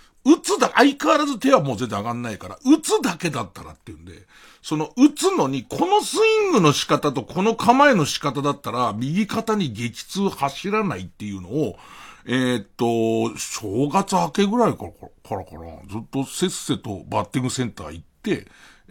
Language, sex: Japanese, male